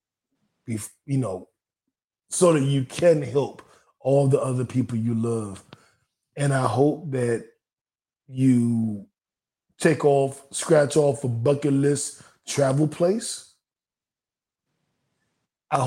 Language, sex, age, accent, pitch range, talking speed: English, male, 20-39, American, 130-150 Hz, 105 wpm